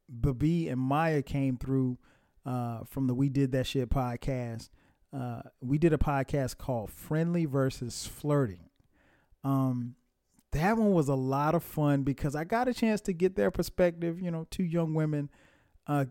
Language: English